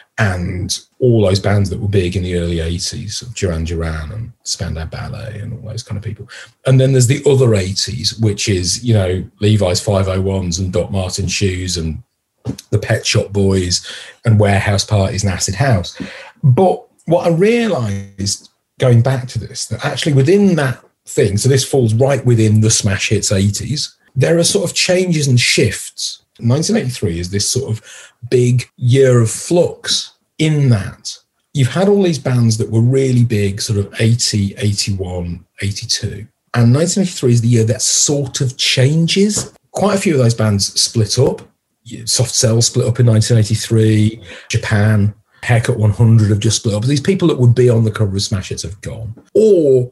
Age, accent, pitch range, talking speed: 40-59, British, 100-130 Hz, 175 wpm